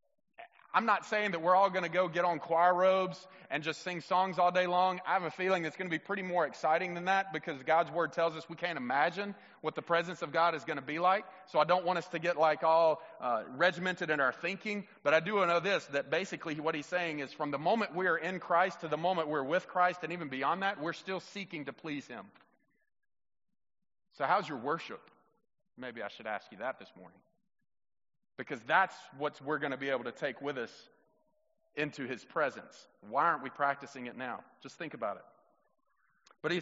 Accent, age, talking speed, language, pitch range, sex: American, 30-49, 225 wpm, English, 165-200 Hz, male